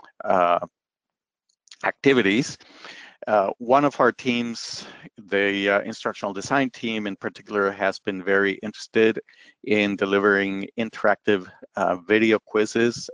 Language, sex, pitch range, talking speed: English, male, 100-115 Hz, 110 wpm